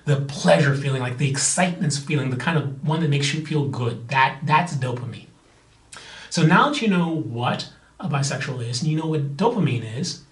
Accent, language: American, English